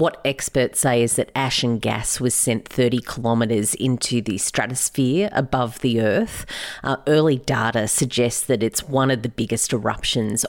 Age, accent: 40-59, Australian